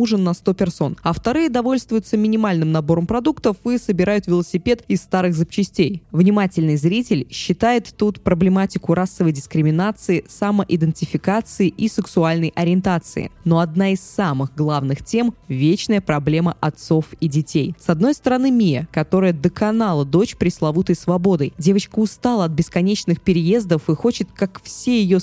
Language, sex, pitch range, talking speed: Russian, female, 165-215 Hz, 140 wpm